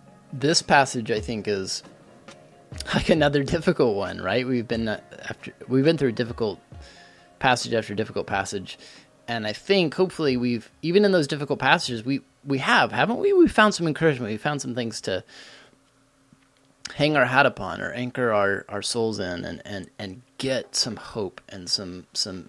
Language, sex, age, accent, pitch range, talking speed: English, male, 20-39, American, 110-145 Hz, 170 wpm